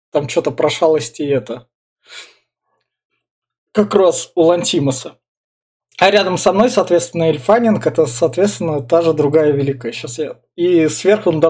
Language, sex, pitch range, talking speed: Russian, male, 150-195 Hz, 130 wpm